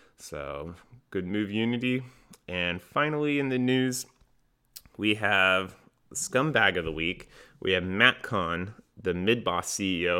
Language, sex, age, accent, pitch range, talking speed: English, male, 30-49, American, 90-110 Hz, 130 wpm